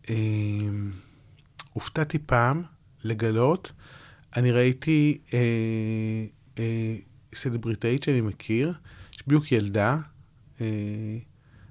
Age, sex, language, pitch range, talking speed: 30-49, male, Hebrew, 115-145 Hz, 75 wpm